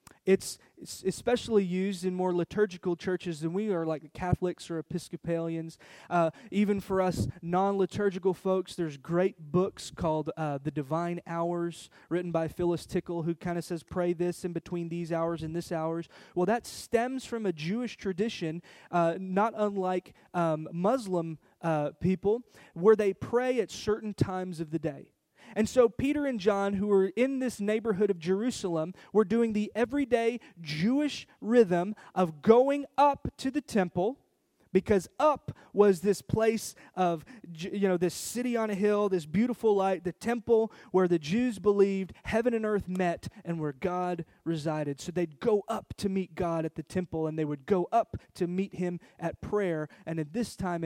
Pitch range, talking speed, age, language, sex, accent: 170-210 Hz, 170 wpm, 20-39, English, male, American